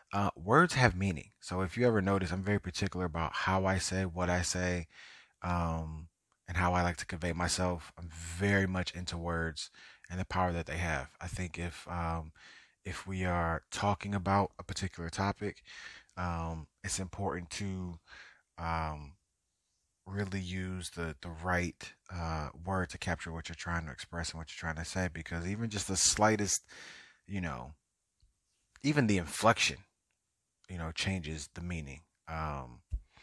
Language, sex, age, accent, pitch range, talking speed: English, male, 30-49, American, 80-95 Hz, 165 wpm